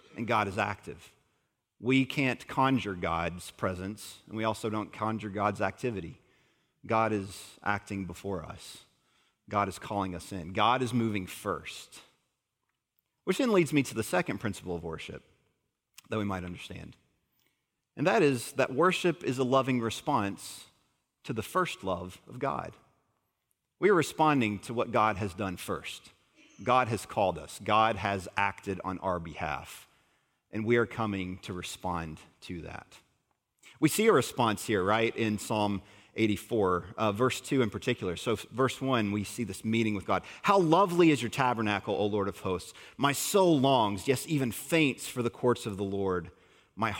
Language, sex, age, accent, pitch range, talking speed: English, male, 40-59, American, 95-120 Hz, 165 wpm